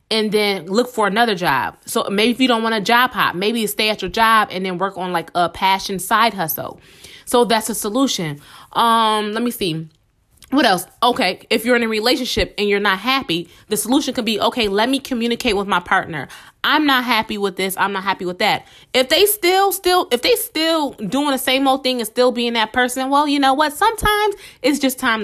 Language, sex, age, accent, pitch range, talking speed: English, female, 20-39, American, 195-250 Hz, 230 wpm